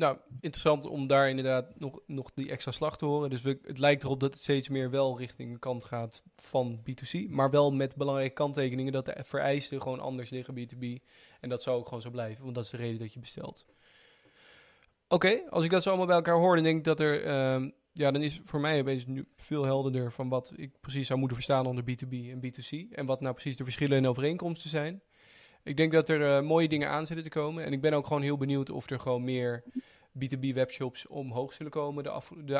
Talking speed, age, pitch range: 220 wpm, 20-39, 125-145 Hz